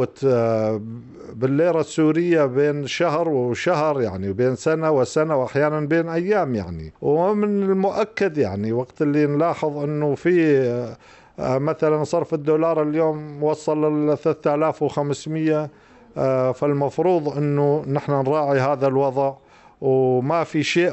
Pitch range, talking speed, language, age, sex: 125-155 Hz, 105 wpm, Arabic, 50-69, male